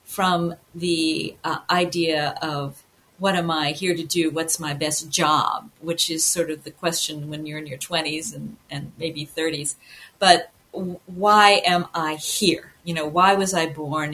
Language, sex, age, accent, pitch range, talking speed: English, female, 50-69, American, 155-190 Hz, 175 wpm